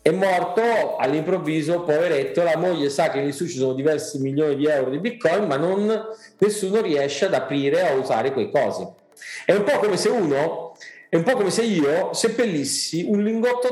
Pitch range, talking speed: 140-200 Hz, 190 wpm